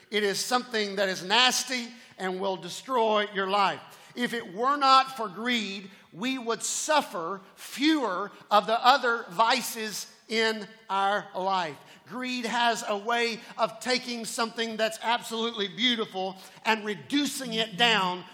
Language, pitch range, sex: English, 195-240 Hz, male